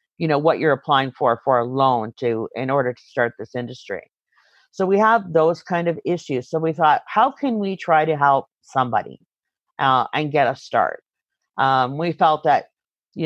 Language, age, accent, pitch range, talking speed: English, 50-69, American, 130-165 Hz, 195 wpm